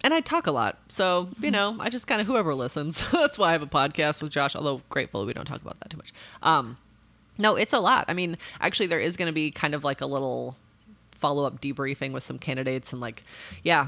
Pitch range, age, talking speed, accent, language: 130-175 Hz, 30-49, 245 wpm, American, English